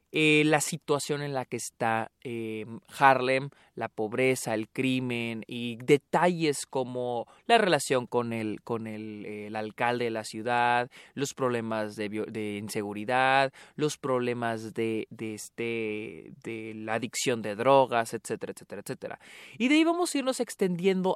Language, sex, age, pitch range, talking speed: Spanish, male, 20-39, 120-155 Hz, 150 wpm